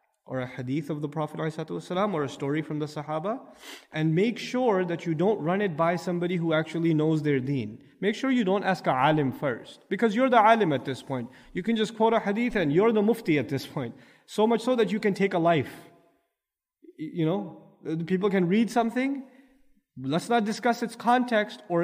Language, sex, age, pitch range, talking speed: English, male, 30-49, 155-220 Hz, 210 wpm